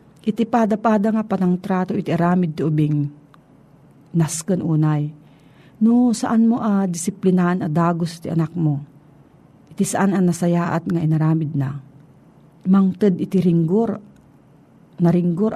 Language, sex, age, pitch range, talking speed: Filipino, female, 50-69, 155-205 Hz, 135 wpm